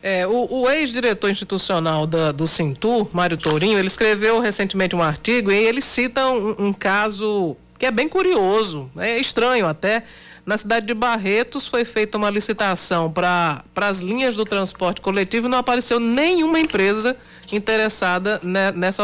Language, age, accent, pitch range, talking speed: Portuguese, 50-69, Brazilian, 190-250 Hz, 150 wpm